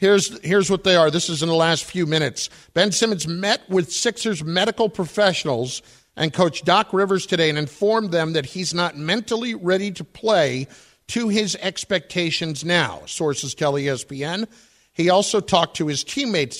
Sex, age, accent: male, 50-69, American